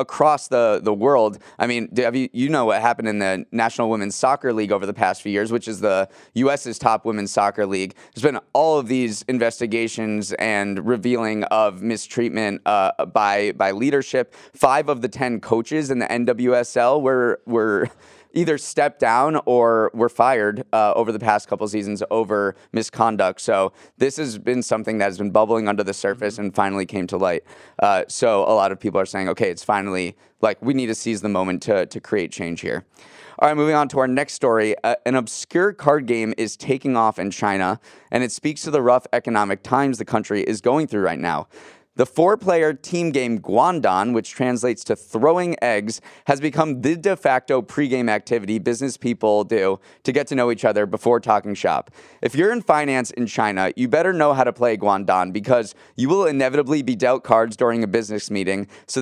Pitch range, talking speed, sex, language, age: 105-135 Hz, 200 wpm, male, English, 20-39